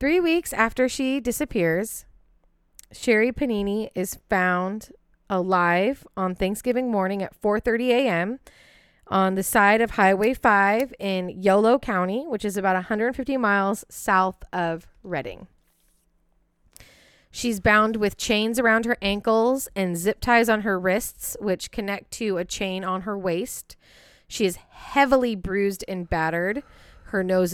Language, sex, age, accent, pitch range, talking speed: English, female, 20-39, American, 185-230 Hz, 135 wpm